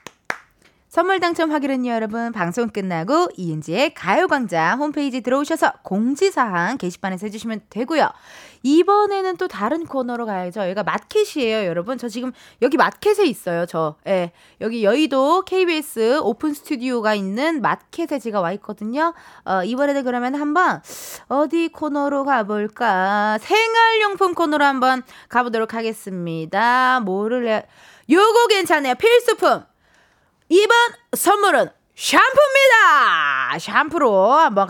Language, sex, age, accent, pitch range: Korean, female, 20-39, native, 210-335 Hz